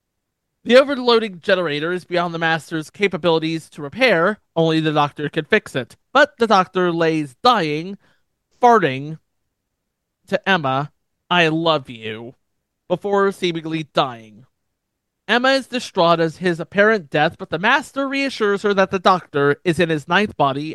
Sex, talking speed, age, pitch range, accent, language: male, 145 wpm, 30-49, 150-205 Hz, American, English